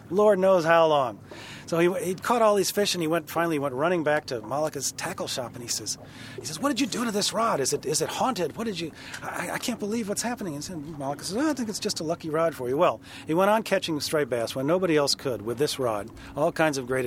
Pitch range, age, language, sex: 125-165 Hz, 40-59, English, male